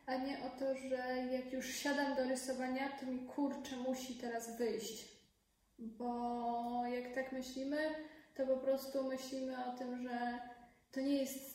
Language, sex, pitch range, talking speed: Polish, female, 245-265 Hz, 155 wpm